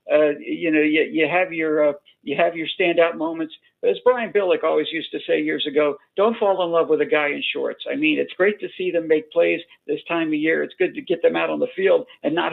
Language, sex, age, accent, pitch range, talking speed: English, male, 60-79, American, 155-210 Hz, 270 wpm